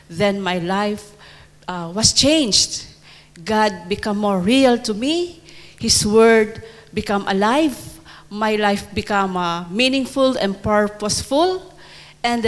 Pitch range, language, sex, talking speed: 190-225 Hz, English, female, 115 wpm